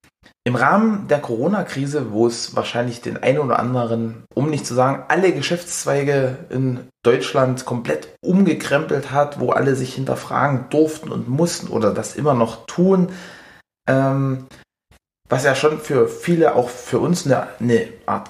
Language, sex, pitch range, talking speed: German, male, 115-150 Hz, 150 wpm